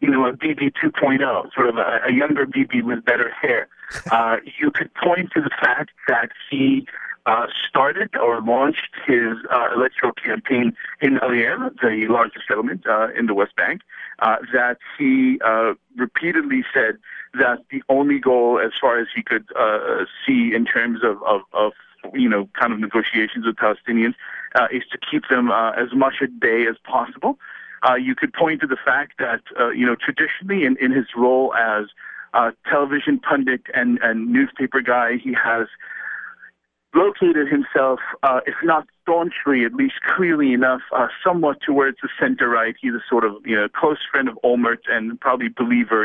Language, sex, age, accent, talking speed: English, male, 50-69, American, 180 wpm